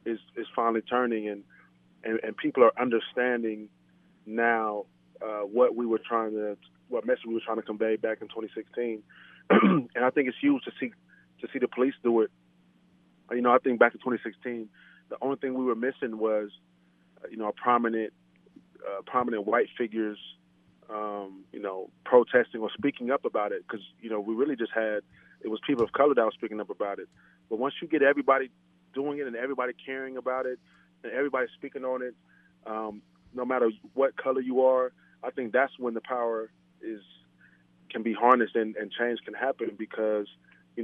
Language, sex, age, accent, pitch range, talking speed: English, male, 30-49, American, 100-125 Hz, 190 wpm